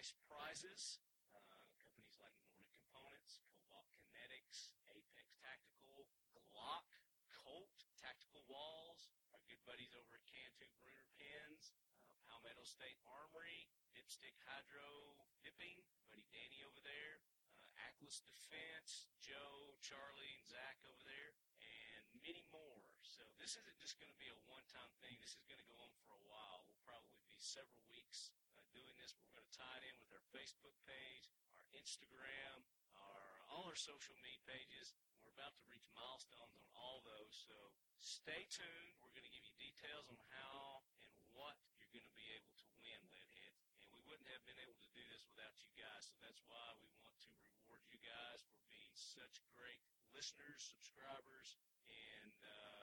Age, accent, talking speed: 40-59, American, 165 wpm